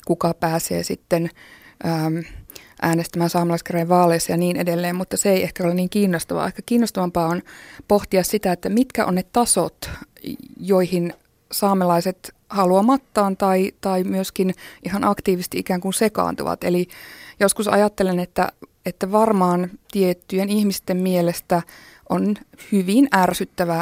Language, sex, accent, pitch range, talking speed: Finnish, female, native, 175-205 Hz, 125 wpm